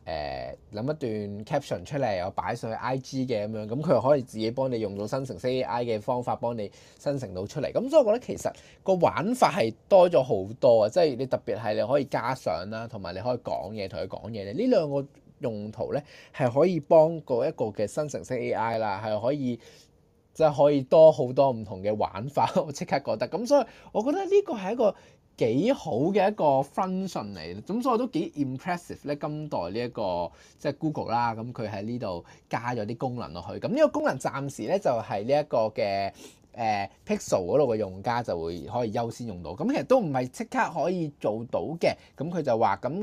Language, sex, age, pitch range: Chinese, male, 20-39, 110-160 Hz